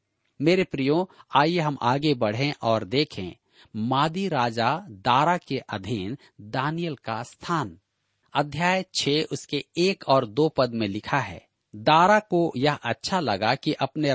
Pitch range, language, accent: 115-165 Hz, Hindi, native